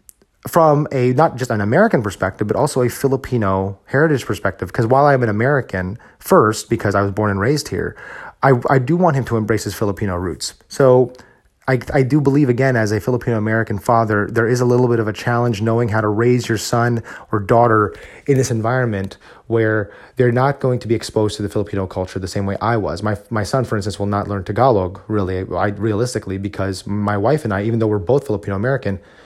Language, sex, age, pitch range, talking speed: English, male, 30-49, 105-135 Hz, 210 wpm